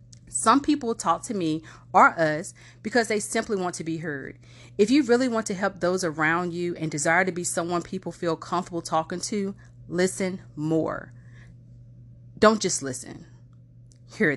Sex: female